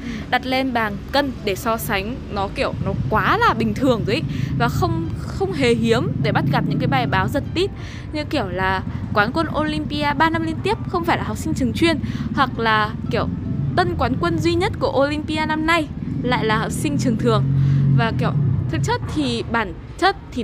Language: Vietnamese